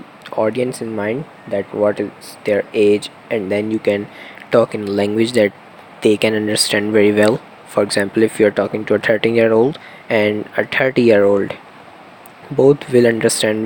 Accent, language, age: Indian, English, 20-39